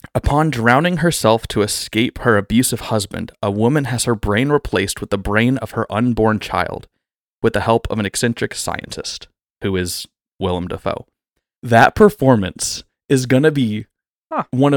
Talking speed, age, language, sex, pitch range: 160 wpm, 20-39, English, male, 100-130 Hz